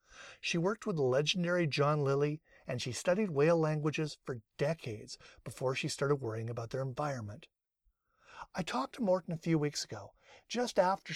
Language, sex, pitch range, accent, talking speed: English, male, 115-155 Hz, American, 165 wpm